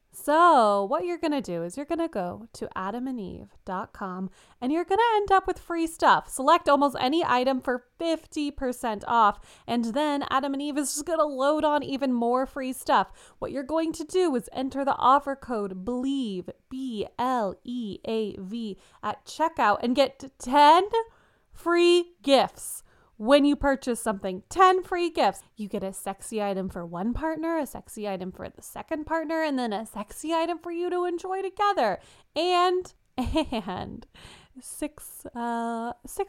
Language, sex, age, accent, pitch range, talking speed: English, female, 20-39, American, 215-315 Hz, 160 wpm